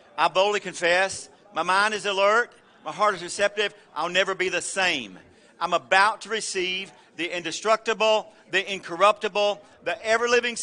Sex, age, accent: male, 50-69, American